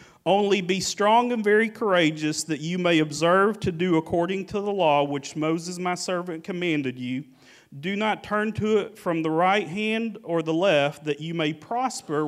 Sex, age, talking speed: male, 40-59, 185 wpm